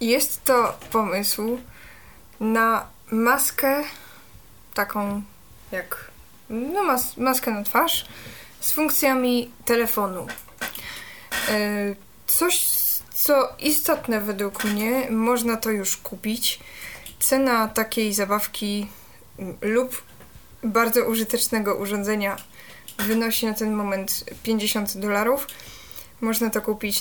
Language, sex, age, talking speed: Polish, female, 20-39, 90 wpm